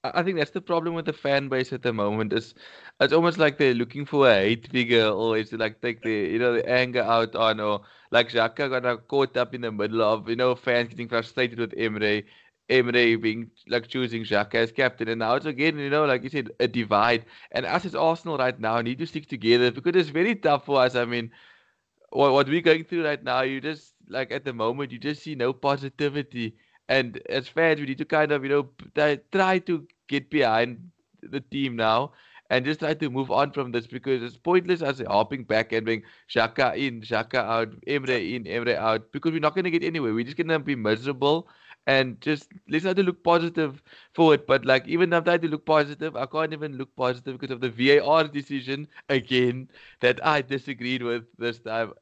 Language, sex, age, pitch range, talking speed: English, male, 20-39, 115-150 Hz, 225 wpm